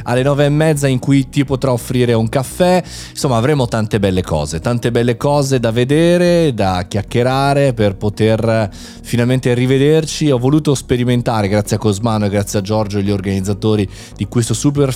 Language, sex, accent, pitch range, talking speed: Italian, male, native, 105-140 Hz, 175 wpm